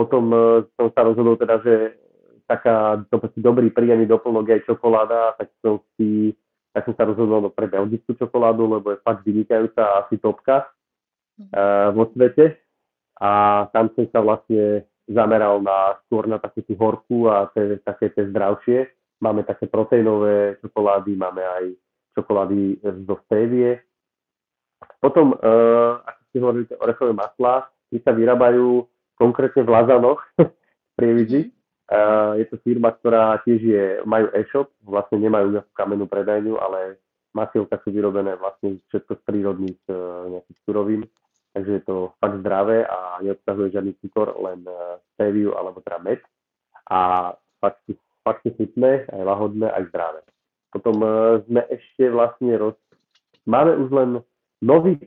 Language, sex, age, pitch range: Slovak, male, 30-49, 100-115 Hz